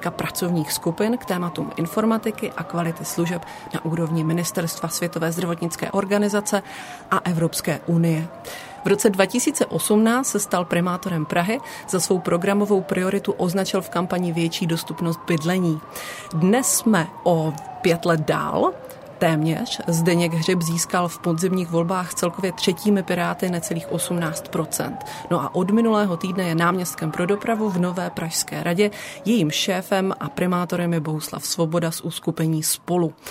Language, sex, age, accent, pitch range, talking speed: Czech, female, 30-49, native, 165-200 Hz, 135 wpm